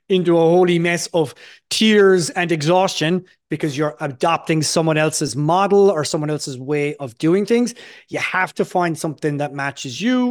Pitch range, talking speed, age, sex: 145-185 Hz, 170 wpm, 30-49, male